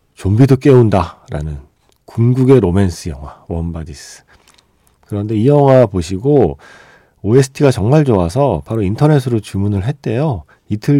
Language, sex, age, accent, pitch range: Korean, male, 40-59, native, 95-140 Hz